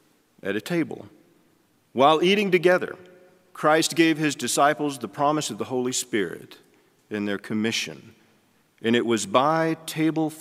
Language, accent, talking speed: English, American, 140 wpm